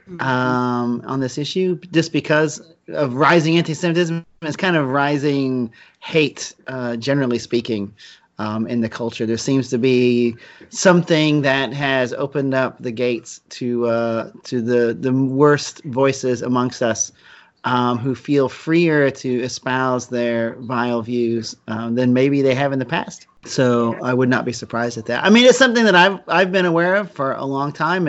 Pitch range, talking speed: 120-155 Hz, 170 wpm